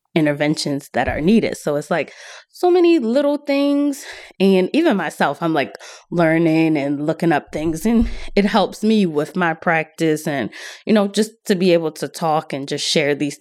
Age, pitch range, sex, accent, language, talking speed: 20-39, 155-210 Hz, female, American, English, 185 wpm